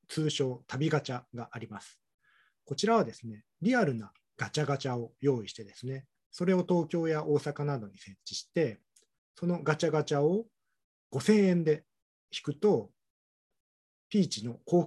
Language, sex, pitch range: Japanese, male, 125-175 Hz